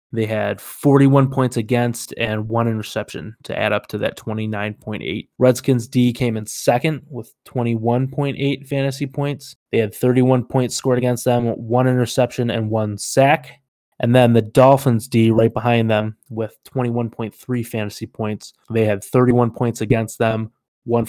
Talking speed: 155 wpm